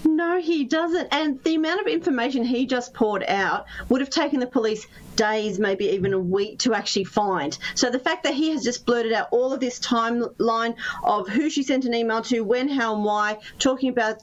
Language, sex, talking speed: English, female, 215 wpm